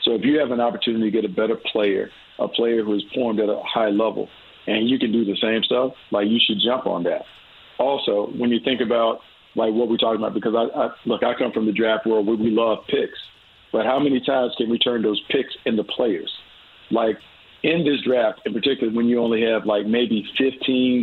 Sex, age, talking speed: male, 50-69, 230 wpm